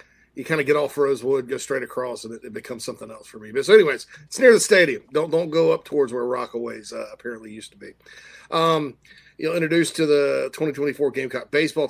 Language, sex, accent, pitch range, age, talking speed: English, male, American, 125-165 Hz, 40-59, 225 wpm